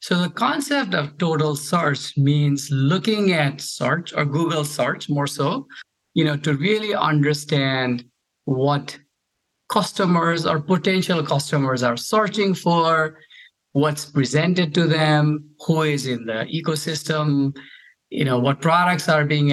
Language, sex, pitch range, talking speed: English, male, 140-175 Hz, 130 wpm